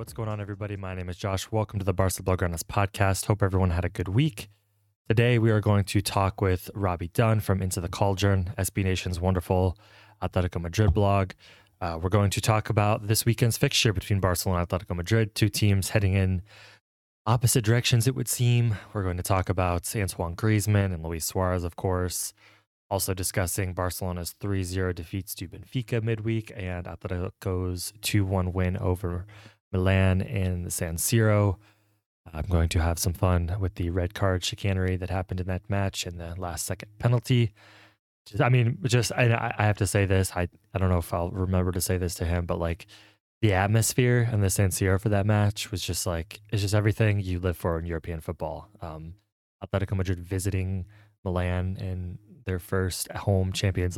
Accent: American